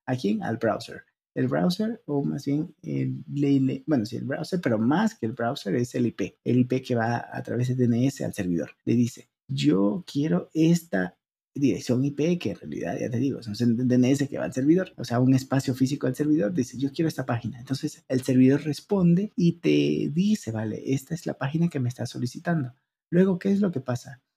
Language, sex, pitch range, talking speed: Spanish, male, 120-160 Hz, 215 wpm